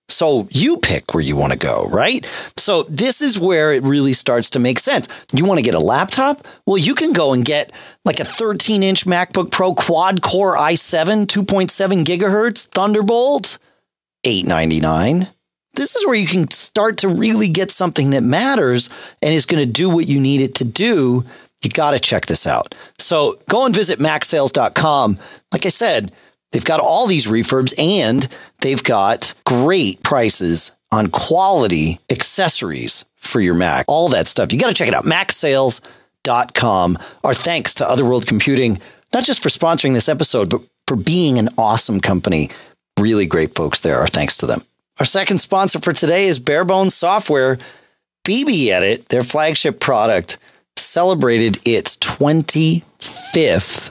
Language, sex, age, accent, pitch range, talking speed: English, male, 40-59, American, 125-190 Hz, 160 wpm